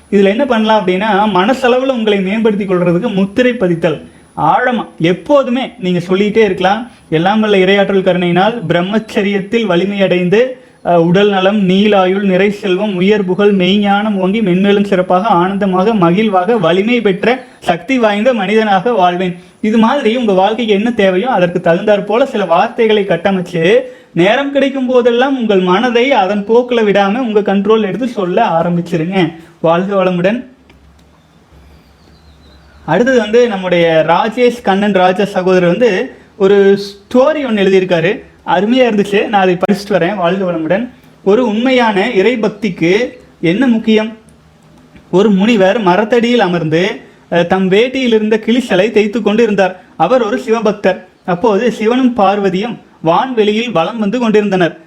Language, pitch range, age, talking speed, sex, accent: Tamil, 180-225 Hz, 30-49, 120 wpm, male, native